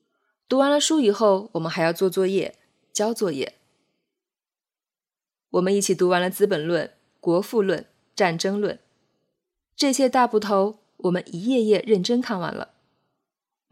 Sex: female